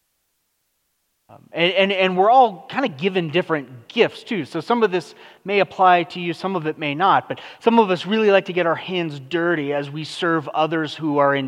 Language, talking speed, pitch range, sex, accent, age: English, 220 wpm, 150-195 Hz, male, American, 30-49